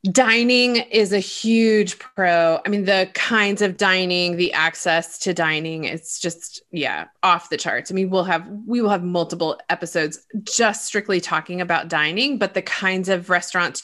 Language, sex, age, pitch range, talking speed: English, female, 20-39, 175-220 Hz, 175 wpm